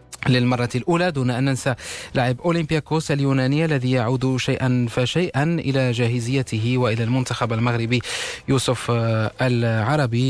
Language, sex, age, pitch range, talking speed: Arabic, male, 20-39, 120-140 Hz, 110 wpm